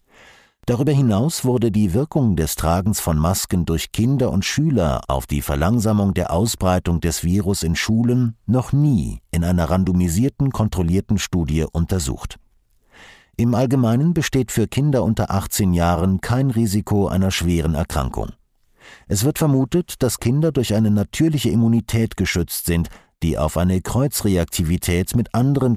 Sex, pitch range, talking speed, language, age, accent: male, 90-120 Hz, 140 wpm, German, 50-69, German